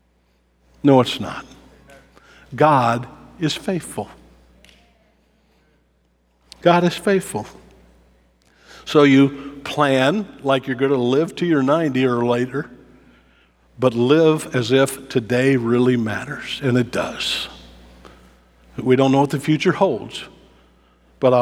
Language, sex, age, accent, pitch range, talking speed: English, male, 60-79, American, 100-150 Hz, 110 wpm